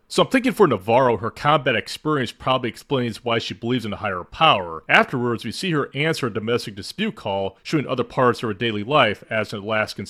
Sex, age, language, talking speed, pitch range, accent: male, 30-49, English, 215 wpm, 105-150 Hz, American